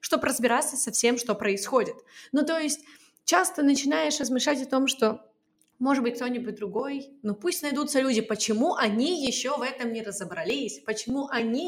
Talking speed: 165 wpm